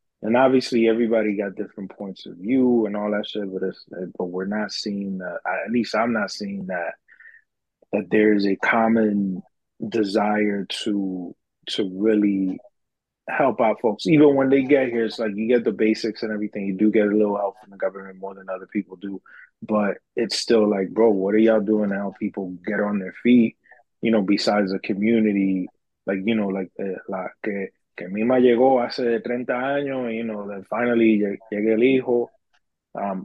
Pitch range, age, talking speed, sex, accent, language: 100-120 Hz, 20-39, 175 wpm, male, American, English